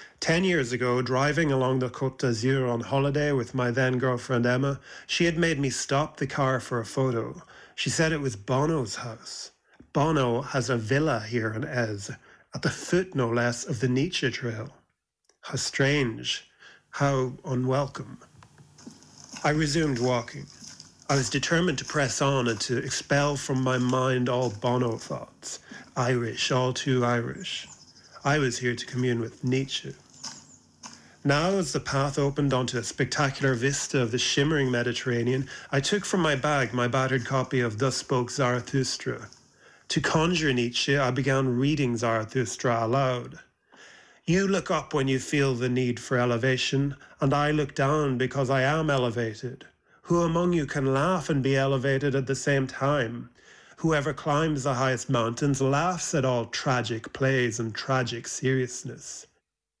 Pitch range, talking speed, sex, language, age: 125-145 Hz, 155 wpm, male, English, 40-59